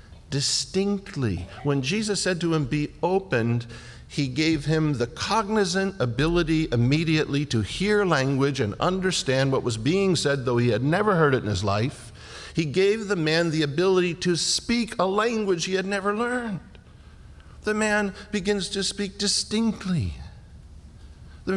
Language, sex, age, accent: English, male, 50-69, American